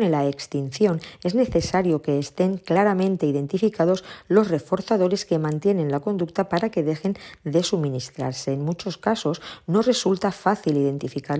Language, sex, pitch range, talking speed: Spanish, female, 150-190 Hz, 135 wpm